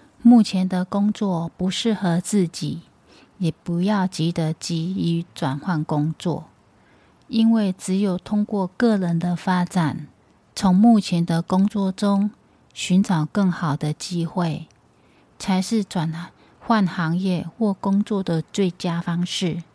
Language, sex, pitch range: Chinese, female, 170-205 Hz